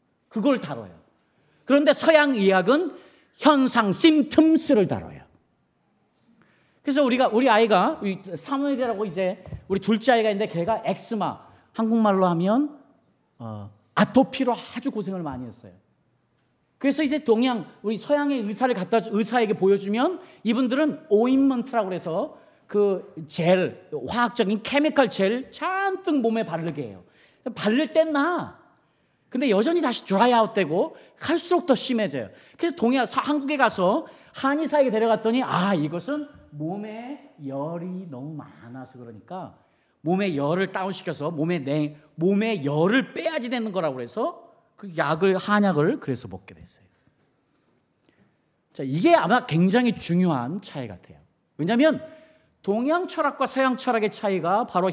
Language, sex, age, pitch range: Korean, male, 40-59, 175-275 Hz